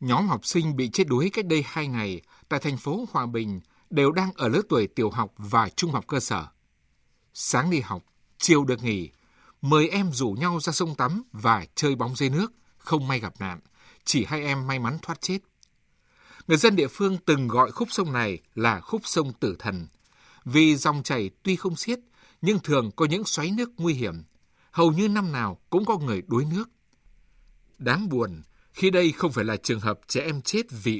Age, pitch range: 60-79, 115-175 Hz